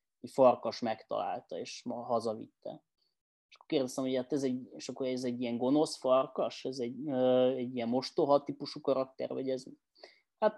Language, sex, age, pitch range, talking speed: Hungarian, male, 20-39, 125-150 Hz, 175 wpm